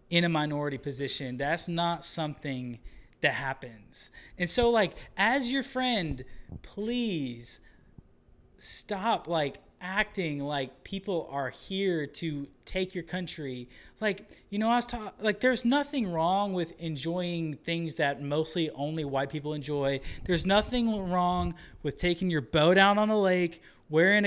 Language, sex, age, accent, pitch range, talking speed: English, male, 20-39, American, 140-185 Hz, 145 wpm